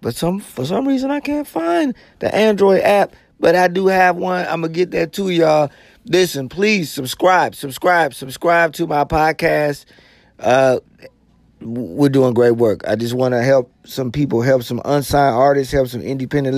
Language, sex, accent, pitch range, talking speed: English, male, American, 130-165 Hz, 175 wpm